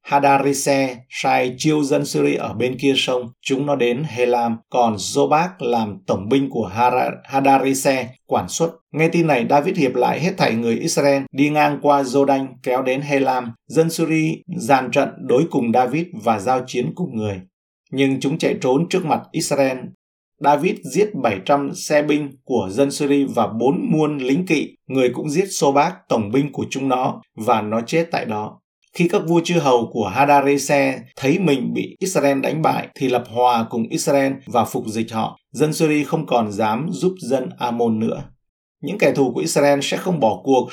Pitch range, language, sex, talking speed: 125-150 Hz, Vietnamese, male, 185 wpm